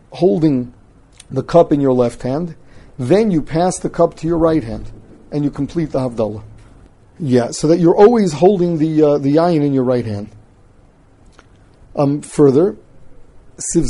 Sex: male